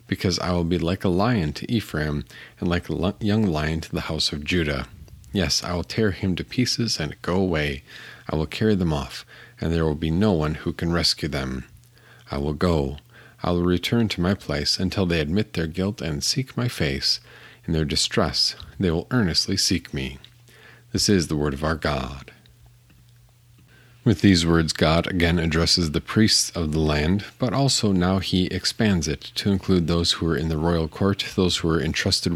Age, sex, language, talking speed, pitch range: 40-59, male, English, 200 wpm, 80-100 Hz